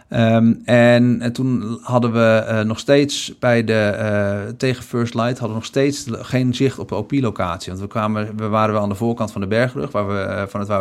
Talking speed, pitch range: 210 wpm, 105-120 Hz